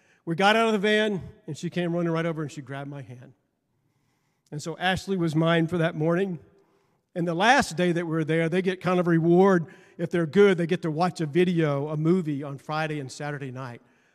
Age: 50-69